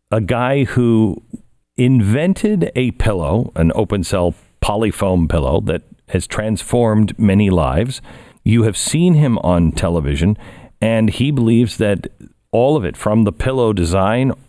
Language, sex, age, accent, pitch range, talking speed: English, male, 50-69, American, 90-115 Hz, 135 wpm